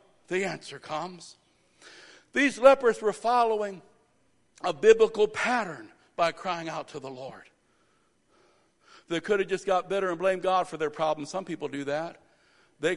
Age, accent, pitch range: 60-79, American, 195-255 Hz